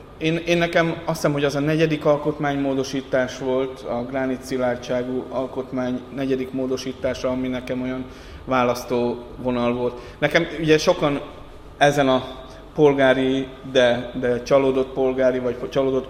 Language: Hungarian